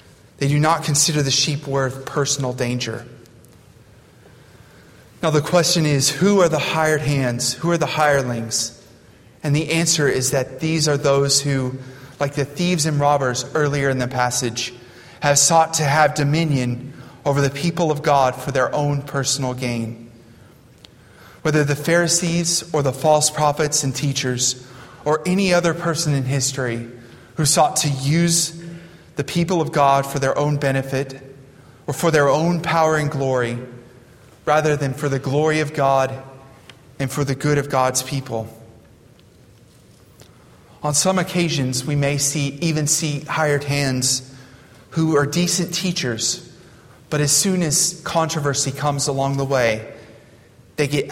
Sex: male